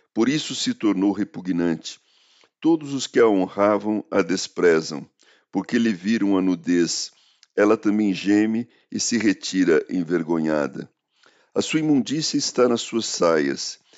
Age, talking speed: 50-69, 135 wpm